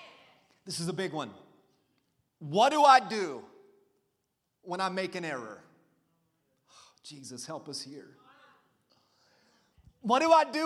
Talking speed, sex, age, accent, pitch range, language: 130 wpm, male, 30-49, American, 190-240 Hz, English